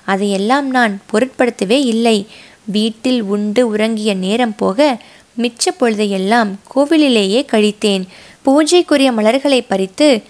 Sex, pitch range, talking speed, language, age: female, 205-255 Hz, 85 wpm, Tamil, 20-39